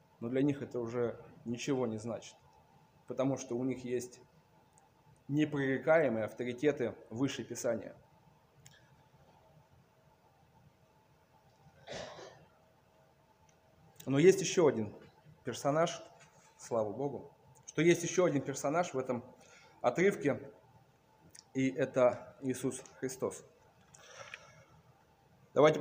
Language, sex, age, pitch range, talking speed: Russian, male, 20-39, 130-160 Hz, 85 wpm